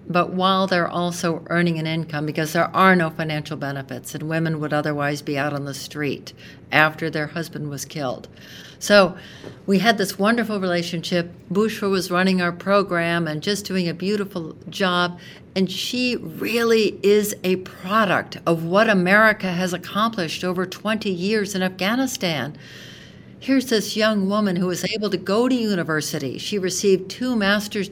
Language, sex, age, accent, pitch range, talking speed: English, female, 60-79, American, 165-200 Hz, 160 wpm